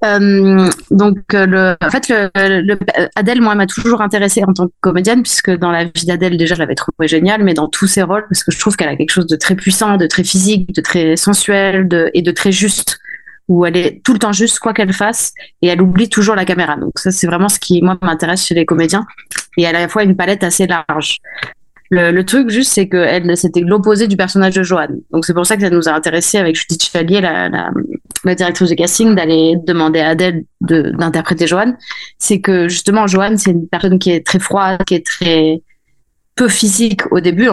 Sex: female